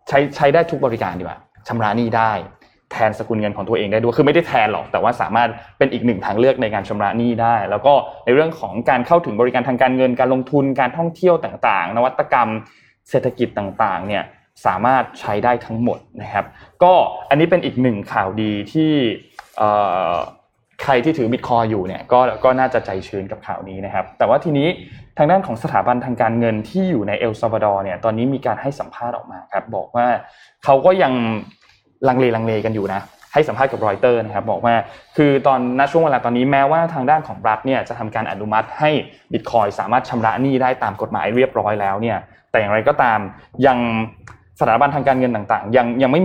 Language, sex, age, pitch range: Thai, male, 20-39, 110-135 Hz